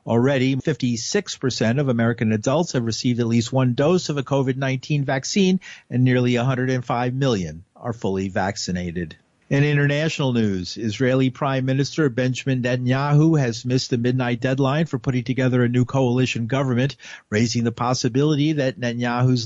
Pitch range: 120-145 Hz